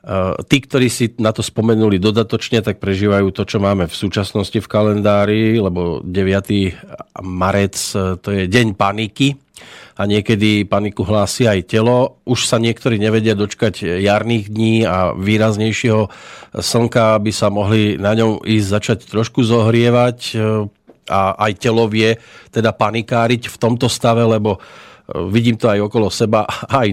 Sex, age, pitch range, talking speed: male, 40-59, 105-120 Hz, 140 wpm